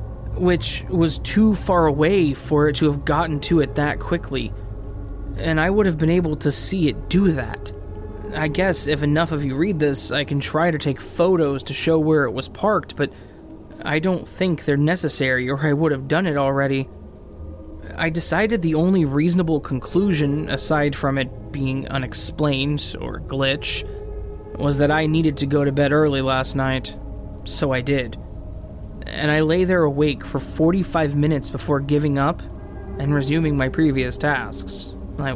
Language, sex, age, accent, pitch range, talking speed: English, male, 20-39, American, 110-155 Hz, 175 wpm